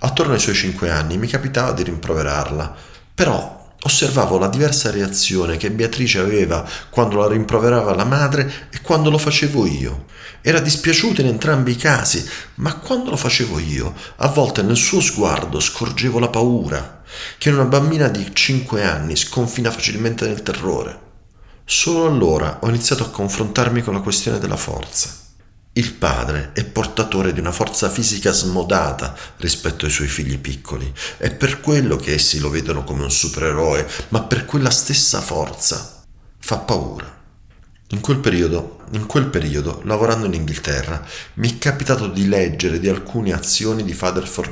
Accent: native